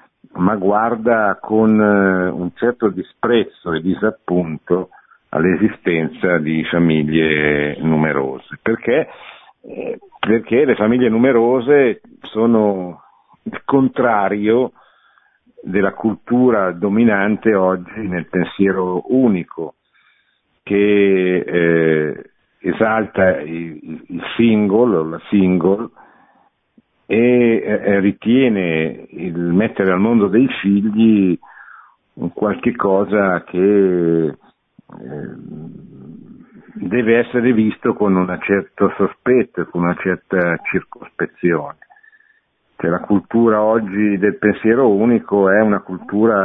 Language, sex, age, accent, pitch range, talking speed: Italian, male, 50-69, native, 90-110 Hz, 85 wpm